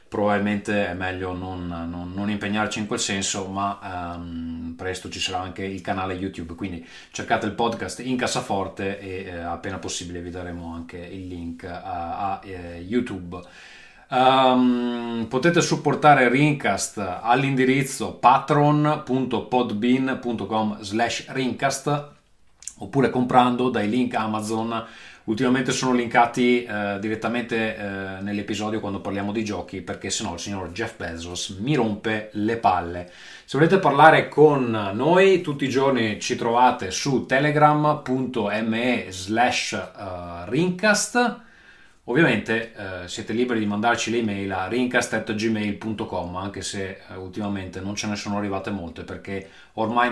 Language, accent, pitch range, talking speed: Italian, native, 95-125 Hz, 130 wpm